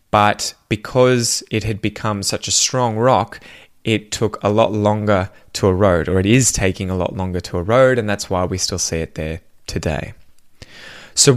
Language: English